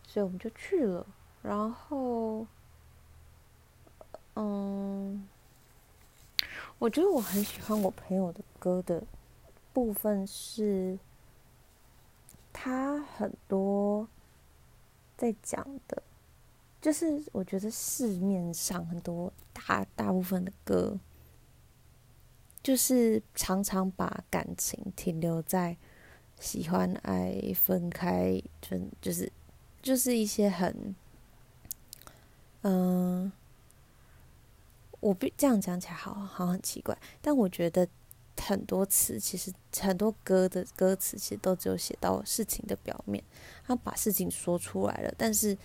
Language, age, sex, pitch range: Chinese, 20-39, female, 170-215 Hz